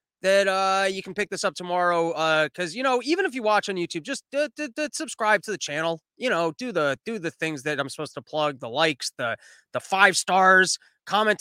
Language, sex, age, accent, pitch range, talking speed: English, male, 20-39, American, 185-245 Hz, 235 wpm